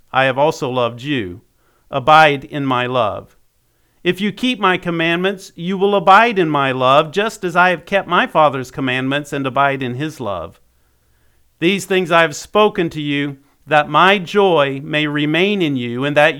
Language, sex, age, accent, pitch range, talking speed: English, male, 50-69, American, 140-185 Hz, 180 wpm